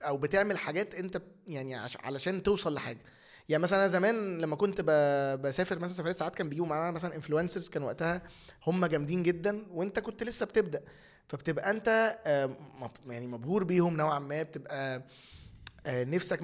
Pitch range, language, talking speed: 150-200 Hz, Arabic, 145 wpm